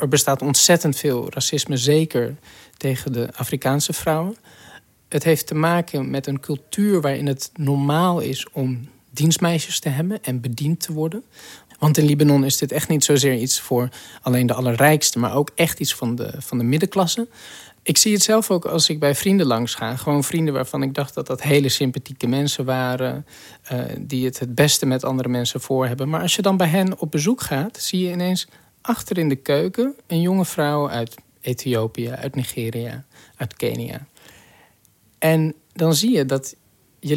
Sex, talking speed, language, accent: male, 180 wpm, Dutch, Dutch